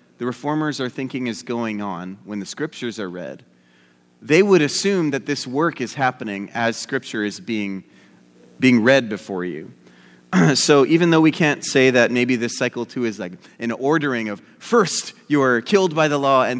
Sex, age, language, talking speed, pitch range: male, 30-49, English, 190 wpm, 100-145 Hz